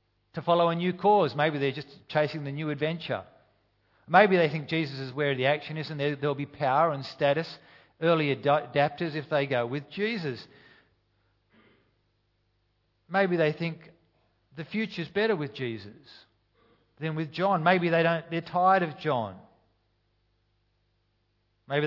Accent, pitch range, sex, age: Australian, 110-155 Hz, male, 50-69